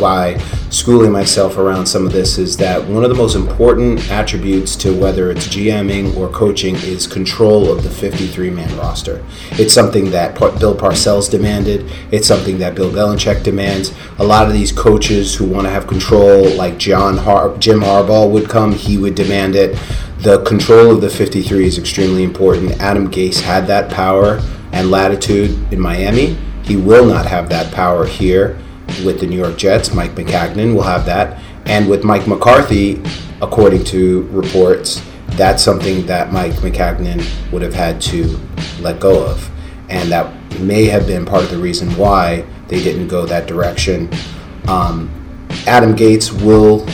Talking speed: 165 wpm